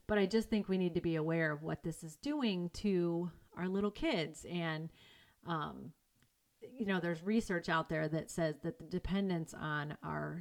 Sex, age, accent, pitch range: female, 30-49, American, 160-185 Hz